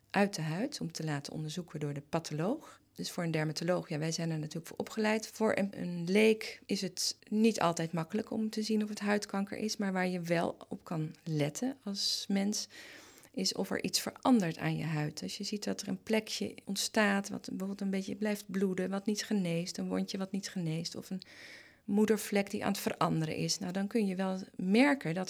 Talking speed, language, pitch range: 215 wpm, Dutch, 165-215 Hz